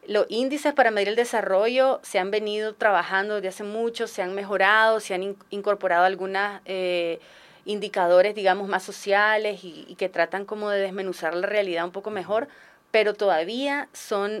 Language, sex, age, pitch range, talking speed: Spanish, female, 30-49, 185-215 Hz, 165 wpm